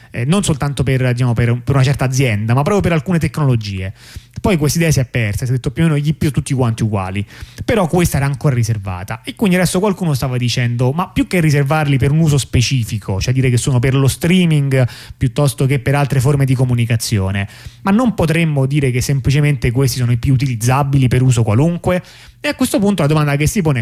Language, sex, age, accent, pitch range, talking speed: Italian, male, 30-49, native, 120-155 Hz, 215 wpm